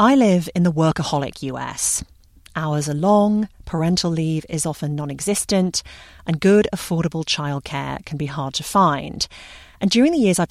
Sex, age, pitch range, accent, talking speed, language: female, 40-59, 150-195 Hz, British, 160 wpm, English